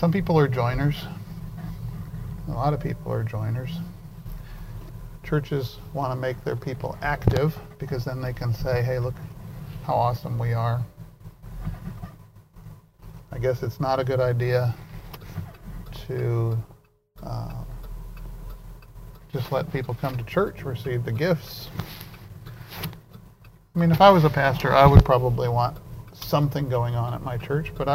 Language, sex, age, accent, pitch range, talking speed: English, male, 50-69, American, 125-145 Hz, 135 wpm